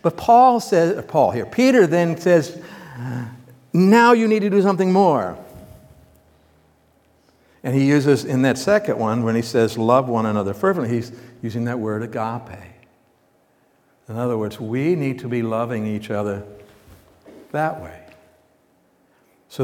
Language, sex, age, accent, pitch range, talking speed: English, male, 60-79, American, 115-180 Hz, 145 wpm